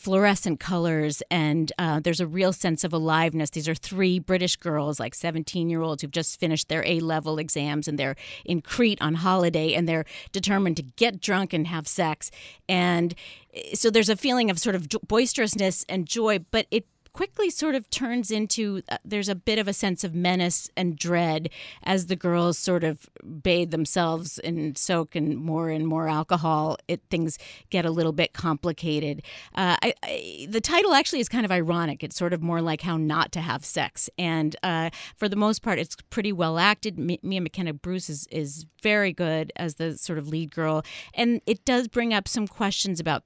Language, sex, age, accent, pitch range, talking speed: English, female, 30-49, American, 160-195 Hz, 195 wpm